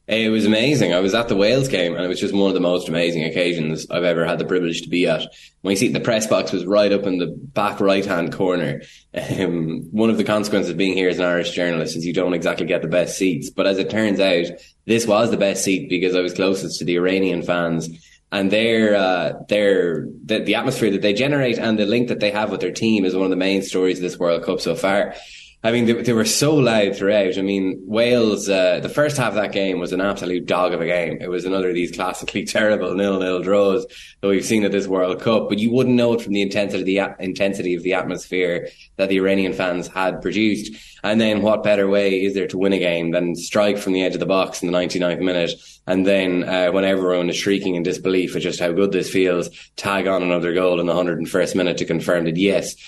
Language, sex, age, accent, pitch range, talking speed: English, male, 10-29, Irish, 90-105 Hz, 250 wpm